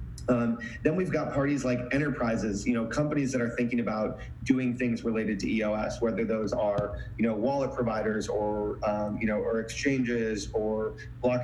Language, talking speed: English, 180 wpm